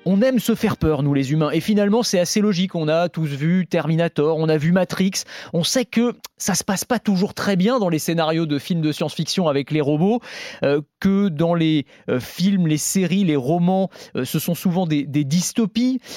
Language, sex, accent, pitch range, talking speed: French, male, French, 145-190 Hz, 220 wpm